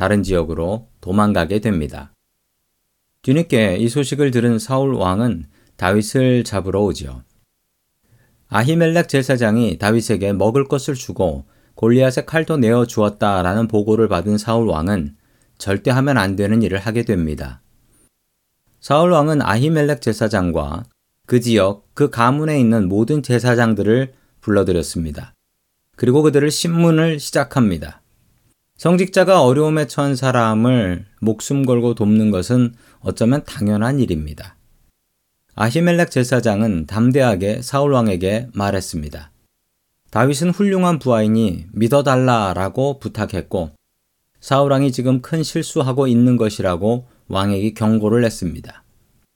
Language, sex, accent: Korean, male, native